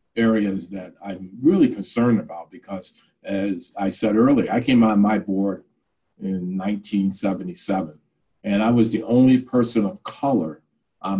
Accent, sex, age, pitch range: American, male, 50-69, 95-110 Hz